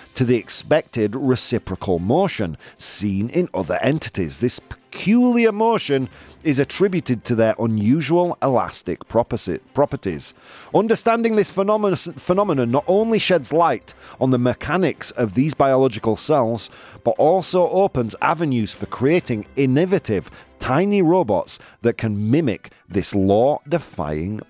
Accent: British